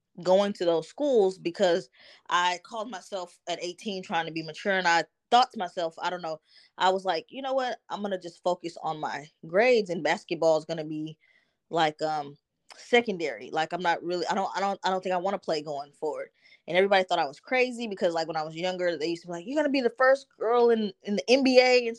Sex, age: female, 20-39